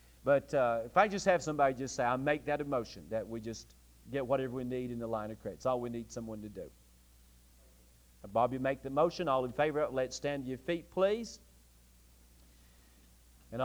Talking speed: 210 wpm